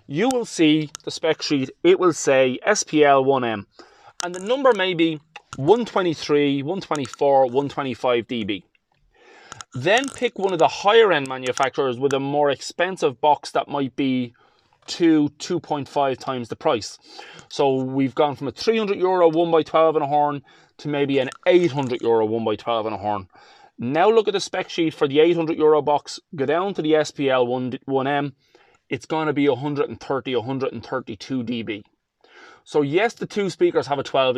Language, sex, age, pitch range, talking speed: English, male, 20-39, 130-170 Hz, 160 wpm